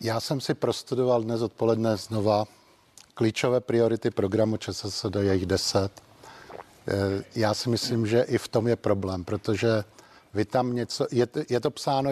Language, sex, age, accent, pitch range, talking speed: Czech, male, 50-69, native, 105-120 Hz, 155 wpm